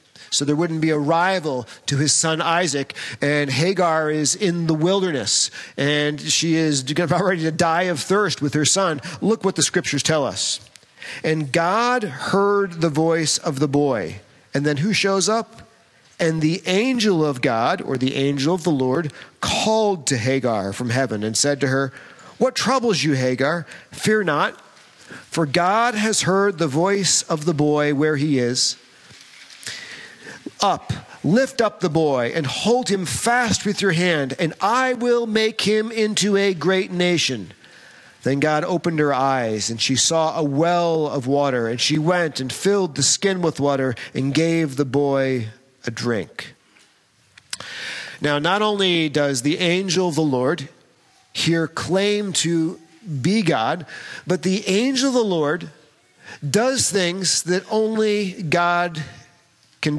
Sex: male